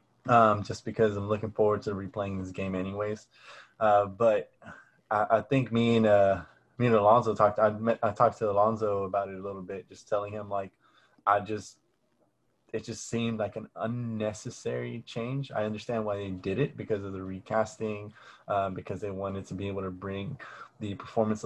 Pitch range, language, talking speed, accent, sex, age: 100-120 Hz, English, 185 wpm, American, male, 20-39